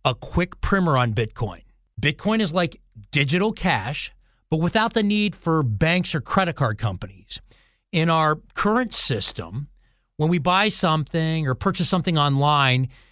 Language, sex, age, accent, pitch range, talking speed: English, male, 40-59, American, 130-190 Hz, 145 wpm